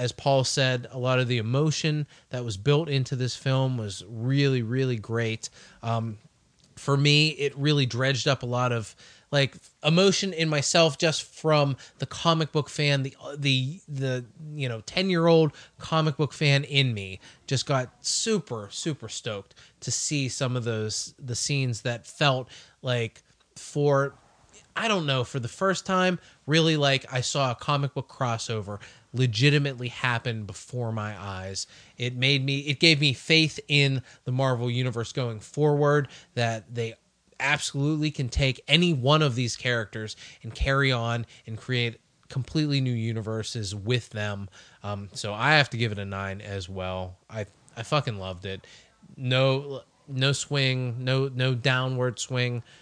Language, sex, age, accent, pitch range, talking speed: English, male, 30-49, American, 115-145 Hz, 160 wpm